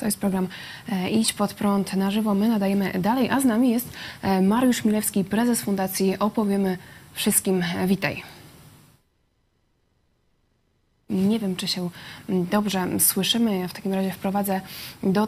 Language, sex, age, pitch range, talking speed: Polish, female, 20-39, 185-215 Hz, 135 wpm